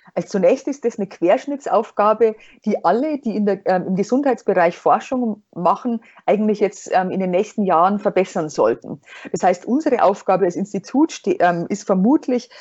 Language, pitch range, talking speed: German, 185-225 Hz, 165 wpm